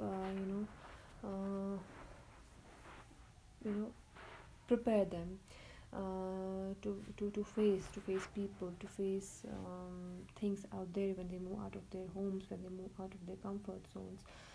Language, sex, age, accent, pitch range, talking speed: English, female, 20-39, Indian, 185-210 Hz, 155 wpm